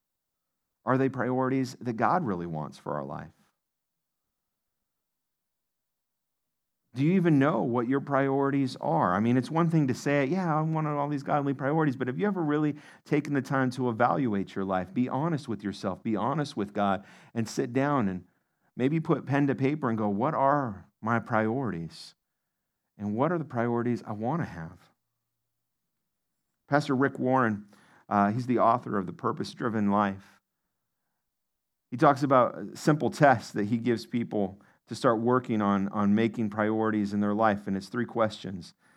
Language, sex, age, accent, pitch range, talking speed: English, male, 50-69, American, 110-145 Hz, 170 wpm